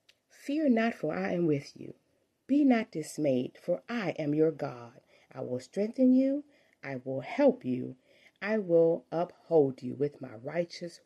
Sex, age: female, 40-59